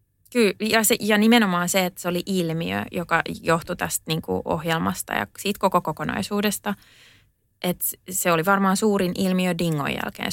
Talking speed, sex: 165 wpm, female